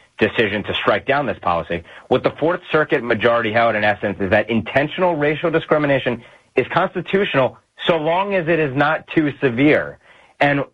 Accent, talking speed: American, 170 wpm